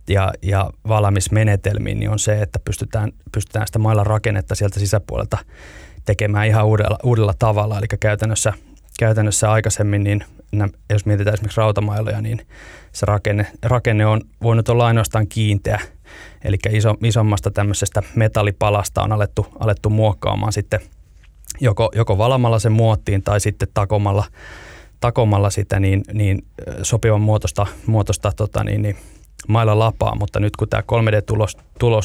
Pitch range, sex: 100-110 Hz, male